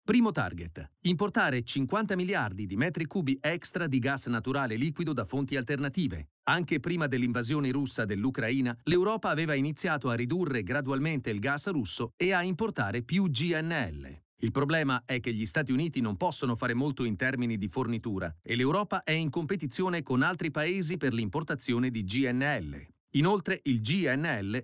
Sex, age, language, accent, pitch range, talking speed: male, 40-59, Italian, native, 120-165 Hz, 160 wpm